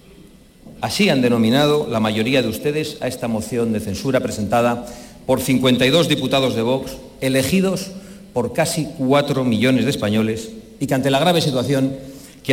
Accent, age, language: Spanish, 50-69, Spanish